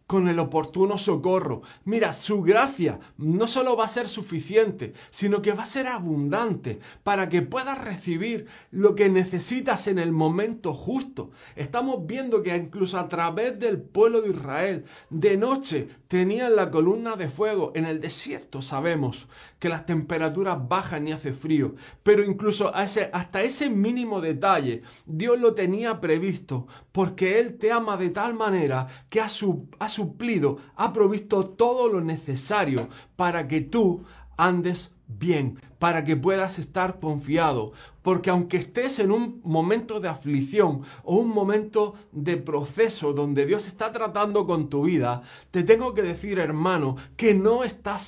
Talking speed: 155 wpm